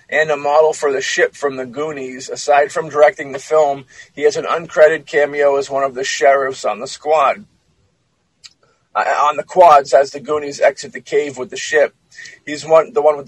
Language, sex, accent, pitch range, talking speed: English, male, American, 135-160 Hz, 205 wpm